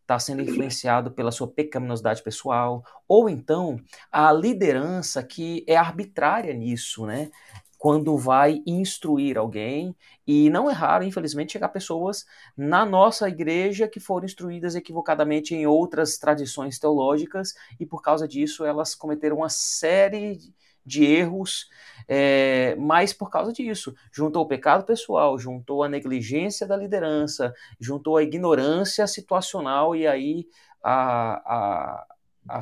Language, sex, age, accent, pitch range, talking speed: Portuguese, male, 30-49, Brazilian, 130-175 Hz, 130 wpm